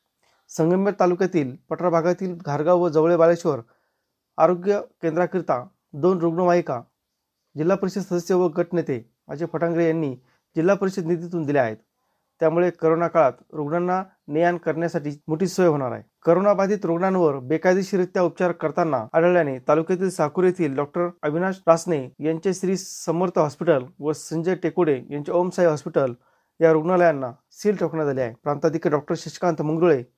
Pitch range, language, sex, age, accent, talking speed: 155-180 Hz, Marathi, male, 40-59, native, 130 wpm